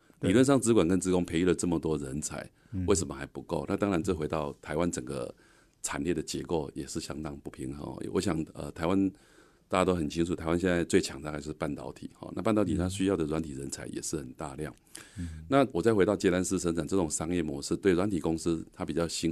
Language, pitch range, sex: Chinese, 75-95 Hz, male